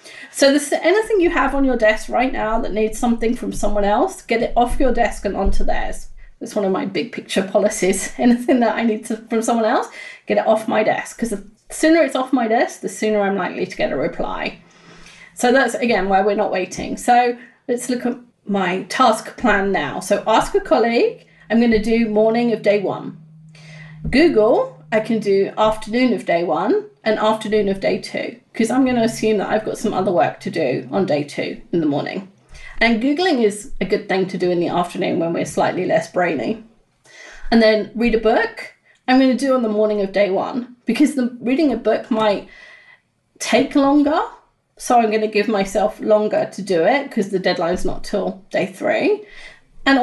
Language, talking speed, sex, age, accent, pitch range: English, 205 wpm, female, 30-49, British, 205-255 Hz